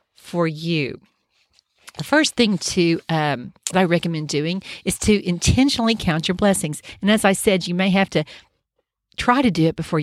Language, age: English, 50-69